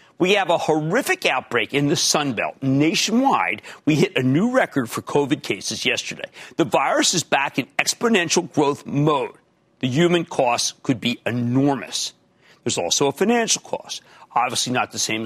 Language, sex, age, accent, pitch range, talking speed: English, male, 50-69, American, 130-215 Hz, 165 wpm